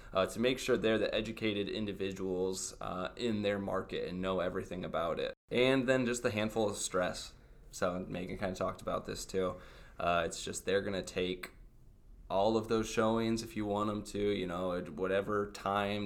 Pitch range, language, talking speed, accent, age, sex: 95-120 Hz, English, 190 wpm, American, 20-39, male